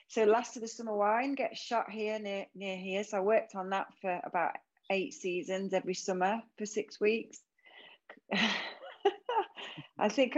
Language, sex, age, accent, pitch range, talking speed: English, female, 30-49, British, 180-225 Hz, 160 wpm